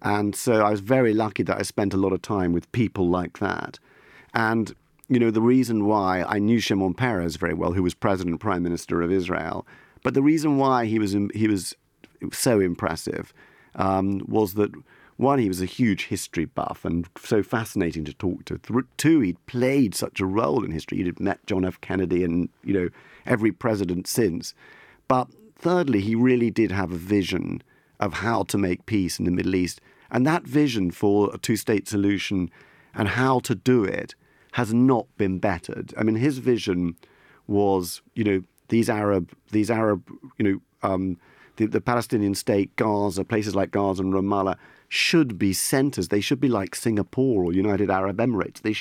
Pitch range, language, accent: 95-115 Hz, English, British